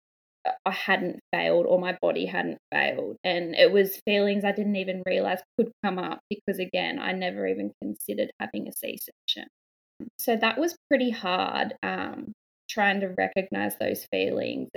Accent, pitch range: Australian, 180-220 Hz